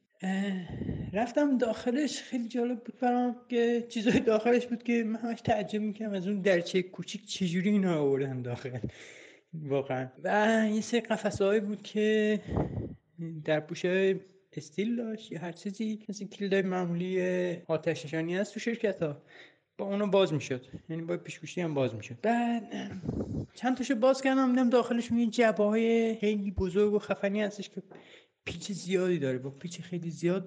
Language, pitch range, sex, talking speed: Persian, 175-230 Hz, male, 145 wpm